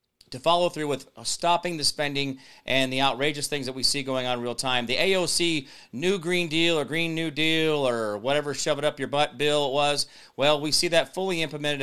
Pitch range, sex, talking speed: 135-180 Hz, male, 225 wpm